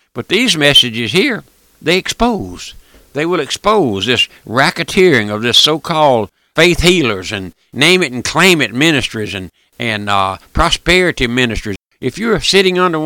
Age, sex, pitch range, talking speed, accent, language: 60-79, male, 115-180 Hz, 130 wpm, American, English